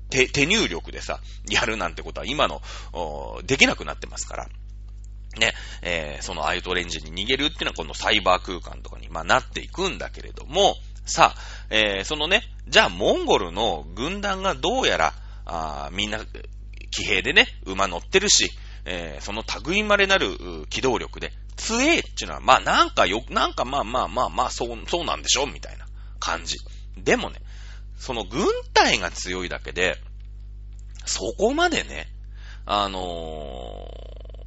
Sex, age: male, 30-49